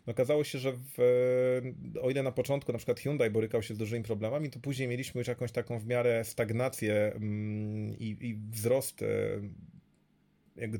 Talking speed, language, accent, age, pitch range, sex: 165 wpm, Polish, native, 30-49, 110-130 Hz, male